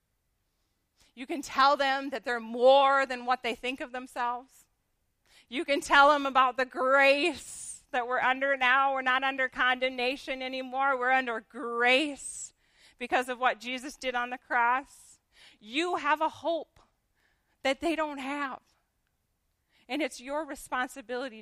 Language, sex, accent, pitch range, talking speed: English, female, American, 235-285 Hz, 145 wpm